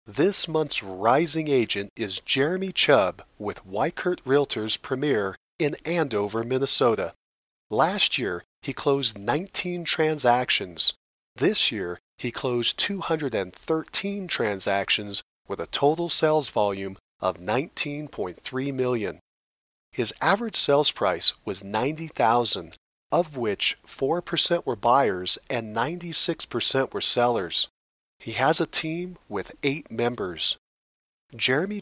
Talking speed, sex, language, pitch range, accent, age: 110 wpm, male, English, 115-165 Hz, American, 40-59